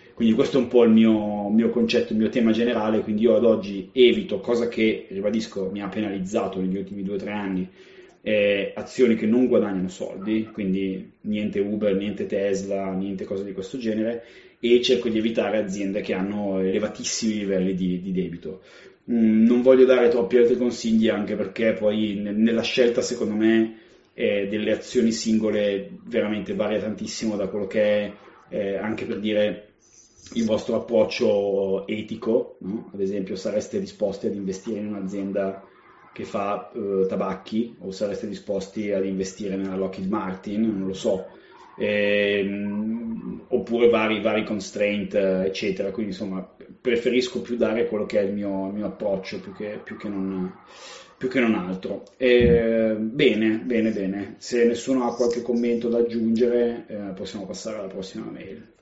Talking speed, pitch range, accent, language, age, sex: 160 wpm, 100-115 Hz, native, Italian, 30-49, male